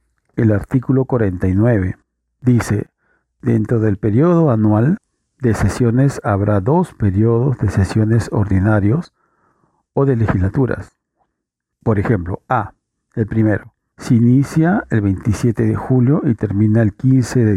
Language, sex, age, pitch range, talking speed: Spanish, male, 50-69, 105-135 Hz, 120 wpm